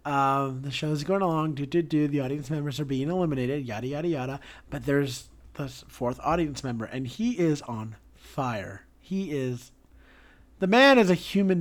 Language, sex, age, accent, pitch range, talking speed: English, male, 40-59, American, 140-180 Hz, 180 wpm